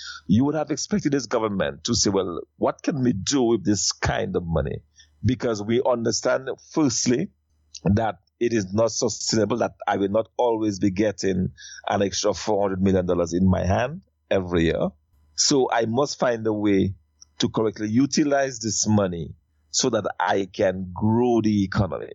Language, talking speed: English, 165 wpm